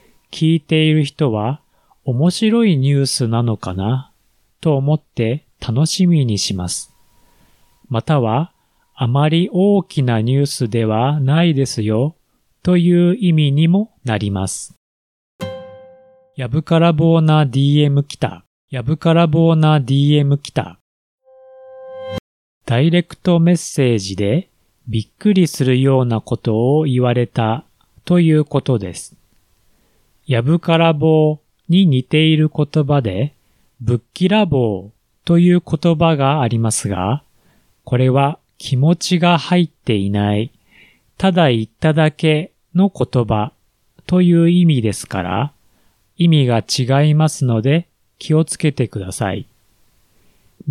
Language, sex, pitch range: Japanese, male, 115-165 Hz